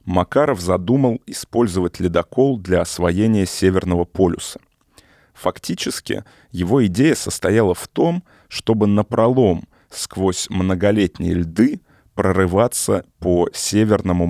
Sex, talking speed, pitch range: male, 90 wpm, 85-105 Hz